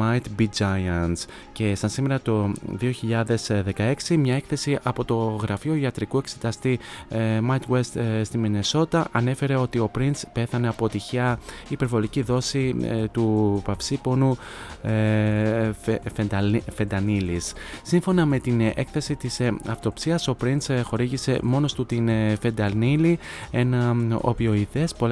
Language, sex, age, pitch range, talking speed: Greek, male, 20-39, 105-125 Hz, 110 wpm